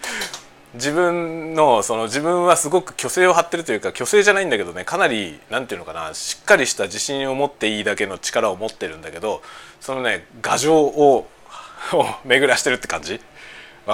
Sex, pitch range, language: male, 130-180 Hz, Japanese